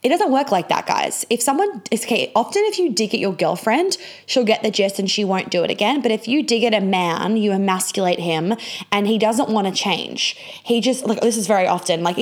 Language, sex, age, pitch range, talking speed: English, female, 20-39, 190-235 Hz, 250 wpm